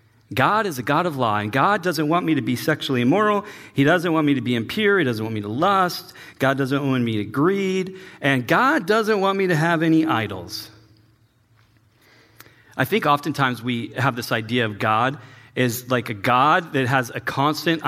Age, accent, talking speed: 40-59, American, 200 wpm